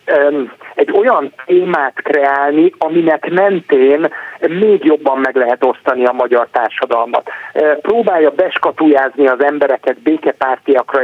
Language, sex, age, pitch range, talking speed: Hungarian, male, 50-69, 130-185 Hz, 105 wpm